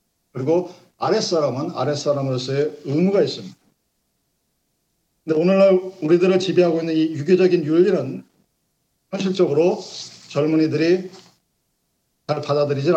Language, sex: Korean, male